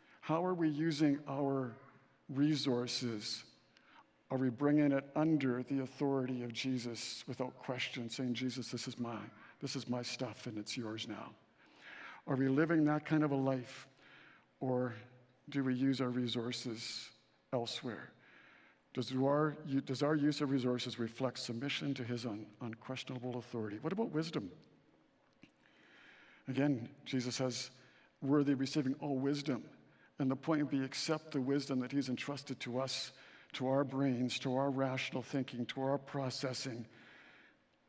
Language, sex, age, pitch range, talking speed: English, male, 60-79, 125-145 Hz, 140 wpm